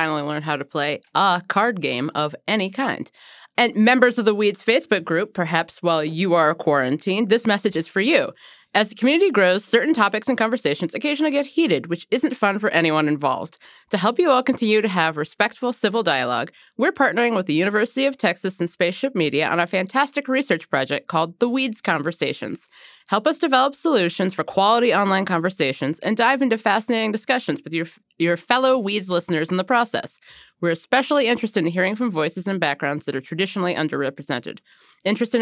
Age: 30-49